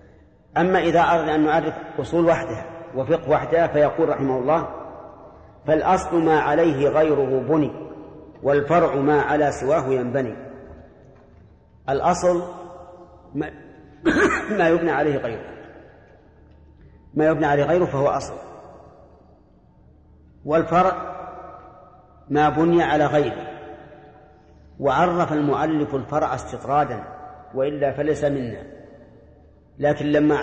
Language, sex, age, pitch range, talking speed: Arabic, male, 40-59, 135-165 Hz, 95 wpm